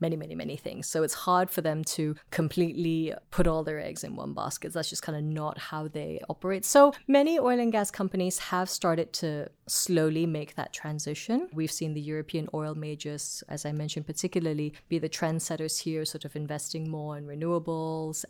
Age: 20-39